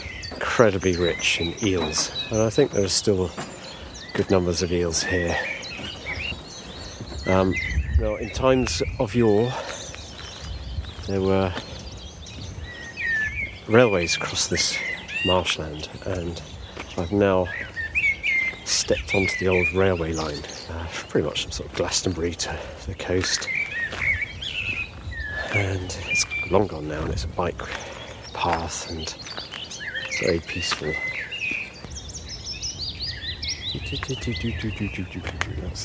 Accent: British